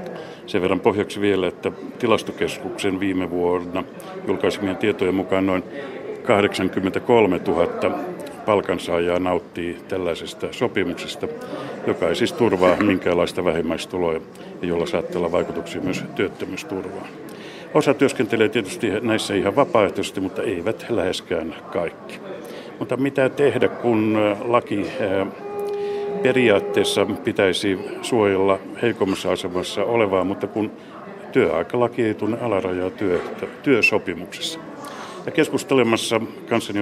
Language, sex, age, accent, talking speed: Finnish, male, 60-79, native, 100 wpm